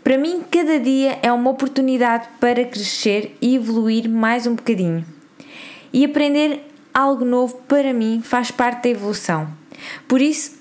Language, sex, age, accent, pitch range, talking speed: Portuguese, female, 20-39, Brazilian, 220-270 Hz, 145 wpm